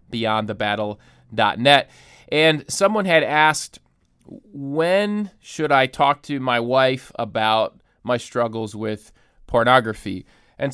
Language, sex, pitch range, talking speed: English, male, 115-145 Hz, 100 wpm